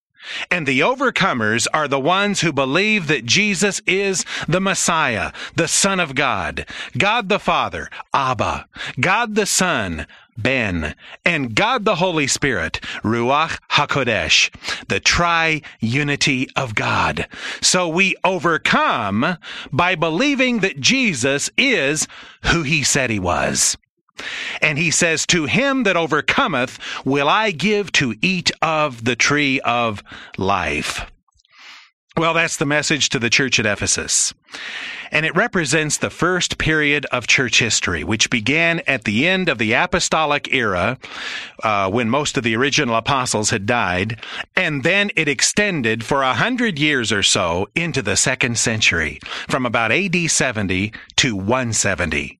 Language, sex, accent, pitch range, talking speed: English, male, American, 130-180 Hz, 140 wpm